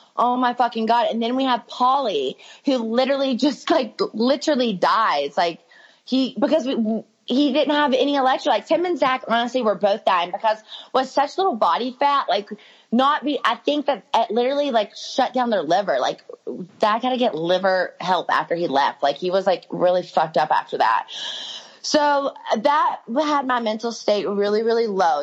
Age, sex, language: 20-39, female, English